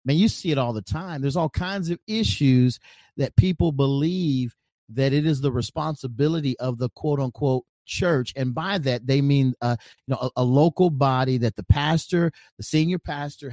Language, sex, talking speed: English, male, 185 wpm